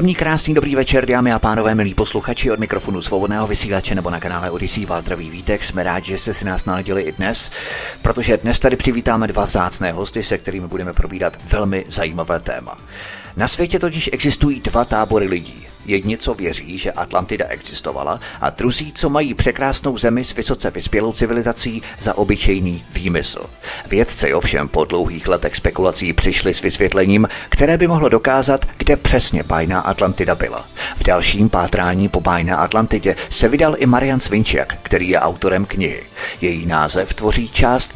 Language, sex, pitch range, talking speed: Czech, male, 90-120 Hz, 165 wpm